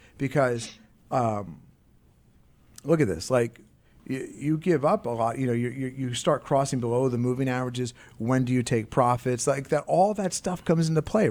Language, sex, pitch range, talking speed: English, male, 115-140 Hz, 185 wpm